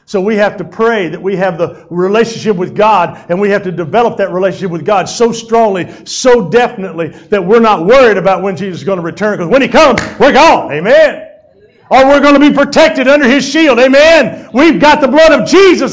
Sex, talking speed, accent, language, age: male, 220 wpm, American, English, 50-69